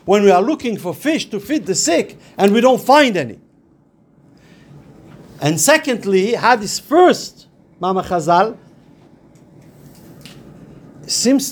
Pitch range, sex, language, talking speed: 165-225 Hz, male, English, 115 wpm